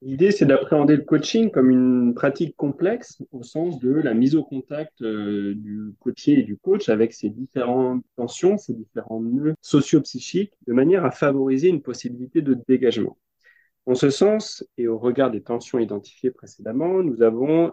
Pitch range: 125-160 Hz